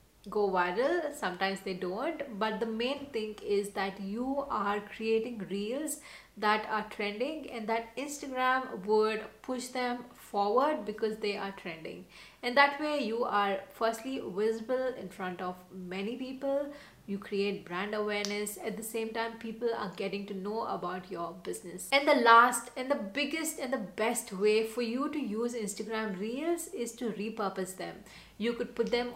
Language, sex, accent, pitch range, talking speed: English, female, Indian, 200-250 Hz, 165 wpm